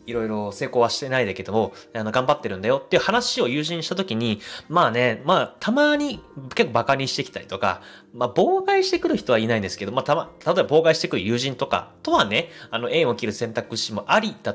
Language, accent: Japanese, native